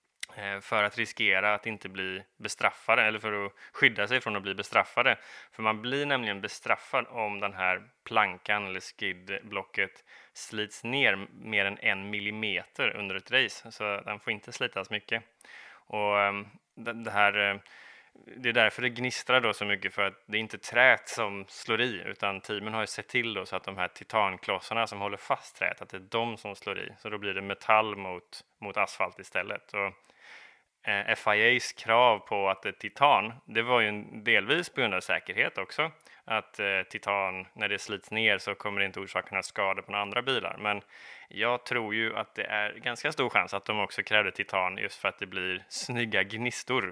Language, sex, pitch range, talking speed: Swedish, male, 100-110 Hz, 190 wpm